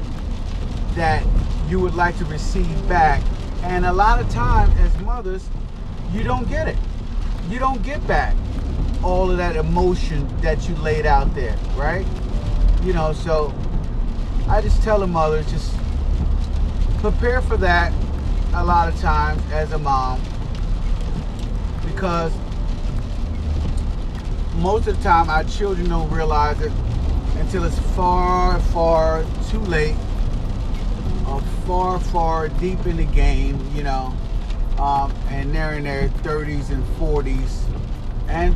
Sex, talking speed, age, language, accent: male, 130 wpm, 30-49, English, American